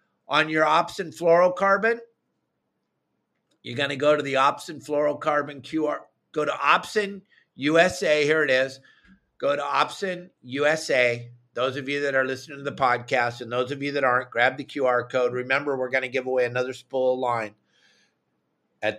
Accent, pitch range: American, 125-155 Hz